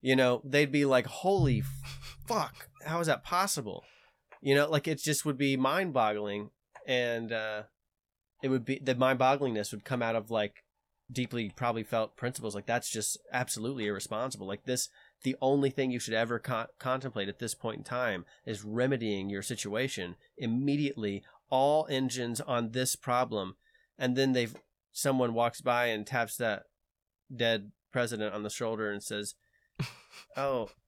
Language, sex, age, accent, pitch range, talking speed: English, male, 30-49, American, 115-135 Hz, 155 wpm